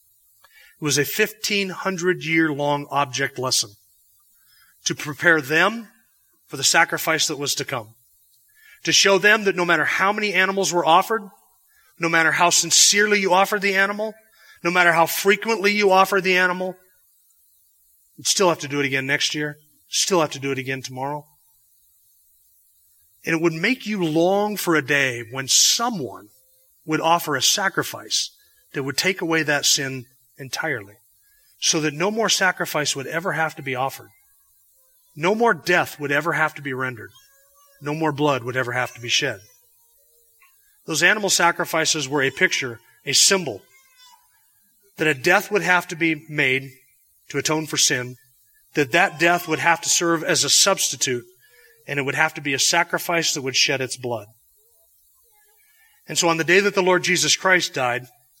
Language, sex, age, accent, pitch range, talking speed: English, male, 30-49, American, 140-195 Hz, 170 wpm